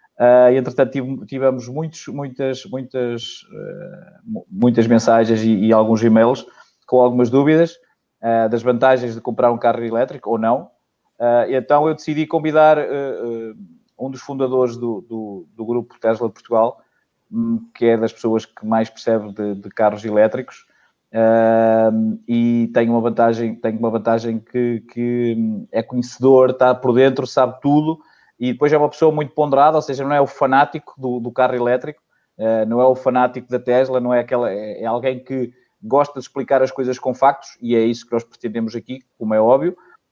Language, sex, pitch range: Portuguese, male, 115-135 Hz